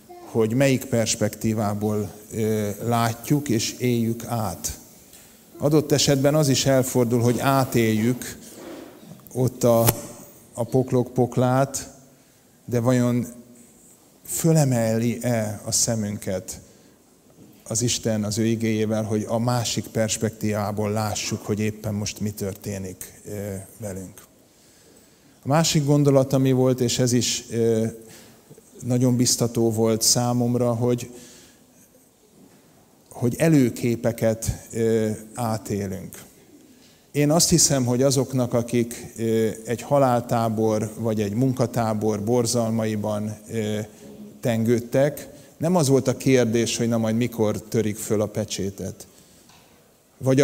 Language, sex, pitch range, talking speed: Hungarian, male, 110-125 Hz, 100 wpm